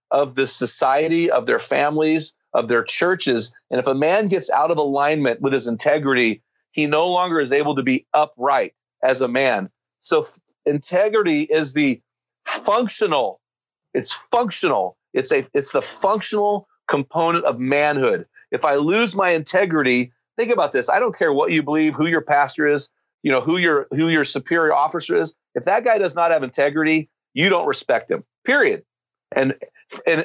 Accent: American